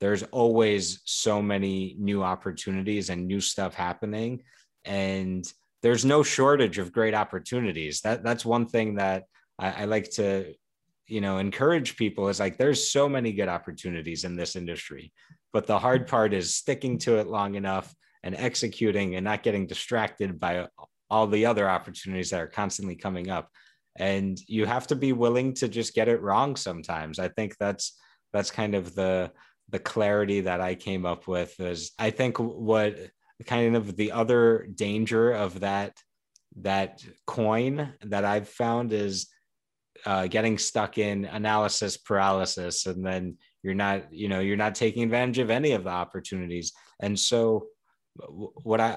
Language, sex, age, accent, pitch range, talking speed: English, male, 30-49, American, 95-115 Hz, 165 wpm